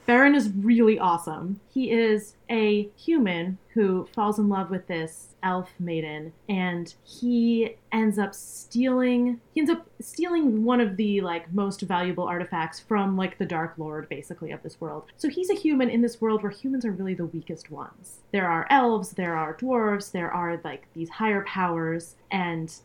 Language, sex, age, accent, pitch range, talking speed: English, female, 20-39, American, 170-220 Hz, 175 wpm